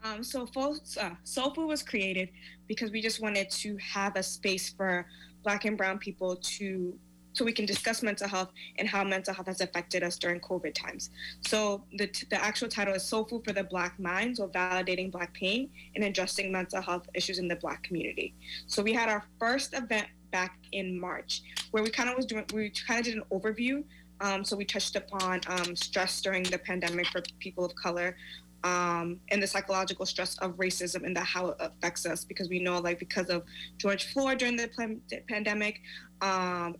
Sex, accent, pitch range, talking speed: female, American, 180-210 Hz, 200 wpm